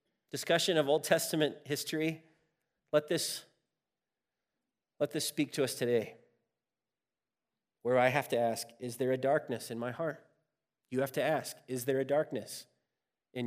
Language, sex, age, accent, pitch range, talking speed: English, male, 30-49, American, 135-190 Hz, 150 wpm